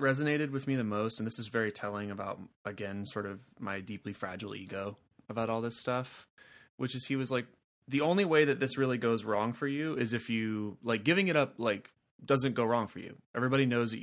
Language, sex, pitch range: English, male, 100-120 Hz